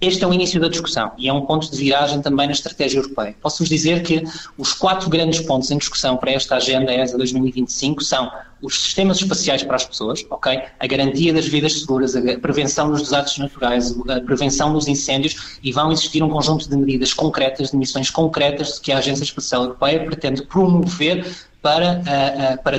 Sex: male